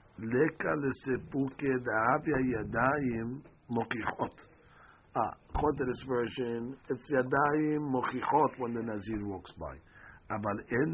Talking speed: 105 wpm